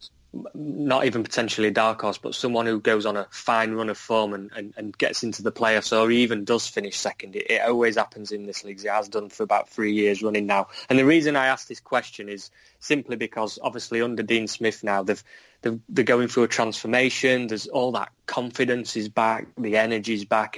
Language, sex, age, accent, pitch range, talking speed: English, male, 20-39, British, 105-120 Hz, 215 wpm